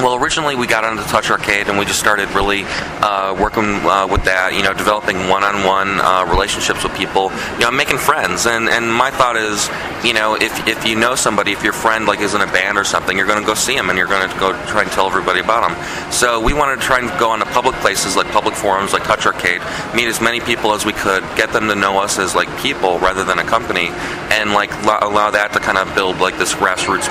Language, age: English, 30-49